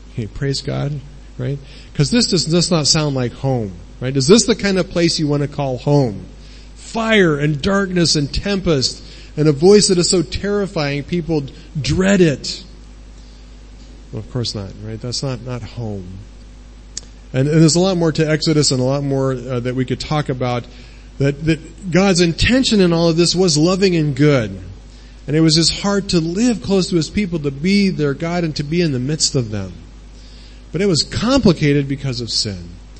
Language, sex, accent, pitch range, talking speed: English, male, American, 135-185 Hz, 195 wpm